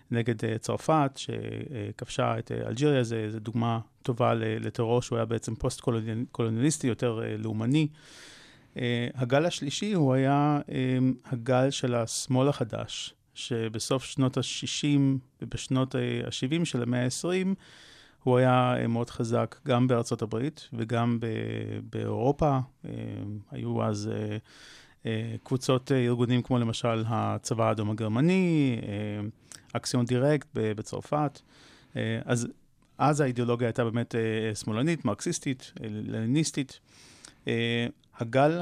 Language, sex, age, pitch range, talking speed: Hebrew, male, 30-49, 115-135 Hz, 95 wpm